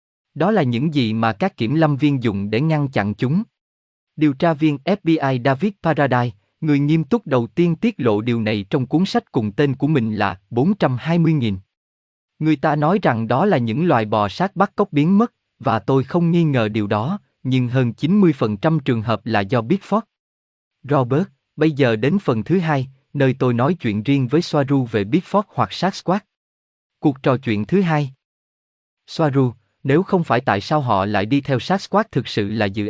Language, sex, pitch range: Vietnamese, male, 115-160 Hz